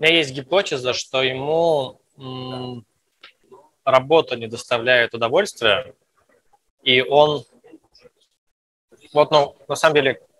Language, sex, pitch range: Russian, male, 125-155 Hz